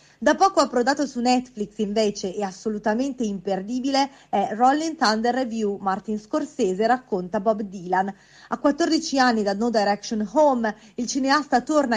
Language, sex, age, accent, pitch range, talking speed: Italian, female, 30-49, native, 205-260 Hz, 140 wpm